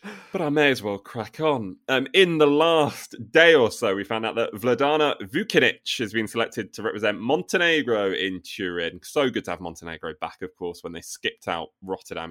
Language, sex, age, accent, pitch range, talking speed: English, male, 30-49, British, 100-145 Hz, 200 wpm